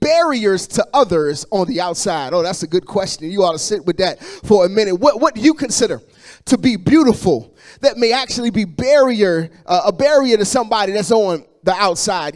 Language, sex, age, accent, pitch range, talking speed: English, male, 30-49, American, 210-260 Hz, 205 wpm